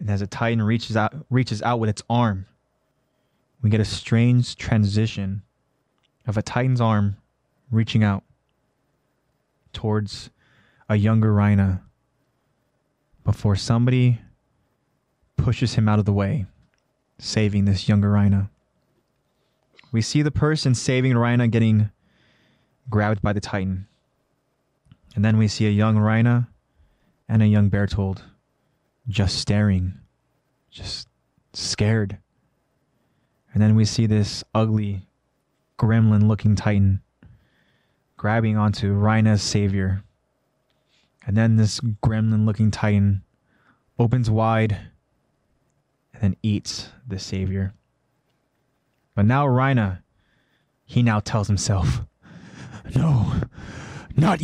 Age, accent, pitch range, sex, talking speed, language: 20-39, American, 100-120 Hz, male, 110 wpm, English